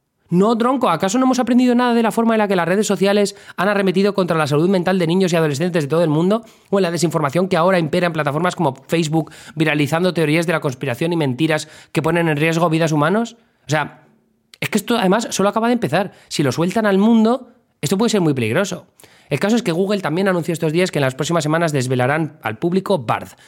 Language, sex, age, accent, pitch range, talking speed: Spanish, male, 20-39, Spanish, 125-175 Hz, 235 wpm